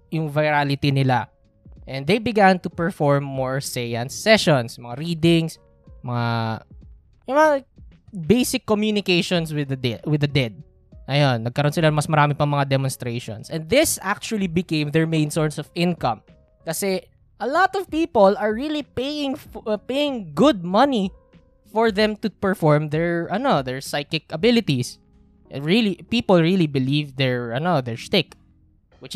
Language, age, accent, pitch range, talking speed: Filipino, 20-39, native, 135-195 Hz, 145 wpm